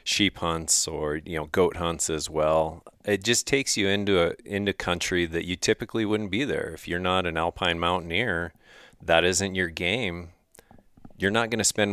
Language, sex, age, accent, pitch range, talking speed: English, male, 30-49, American, 85-100 Hz, 190 wpm